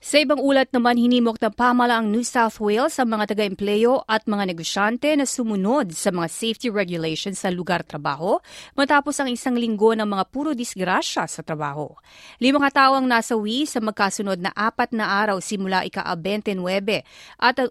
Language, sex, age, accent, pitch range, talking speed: Filipino, female, 30-49, native, 195-245 Hz, 155 wpm